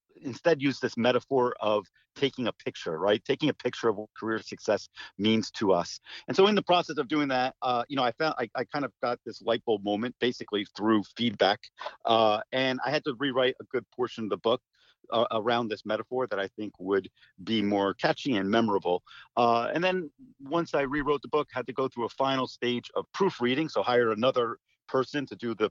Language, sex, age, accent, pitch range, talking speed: English, male, 50-69, American, 105-135 Hz, 215 wpm